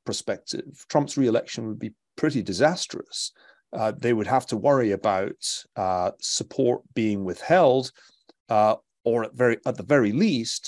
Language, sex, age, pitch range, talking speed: English, male, 40-59, 105-130 Hz, 140 wpm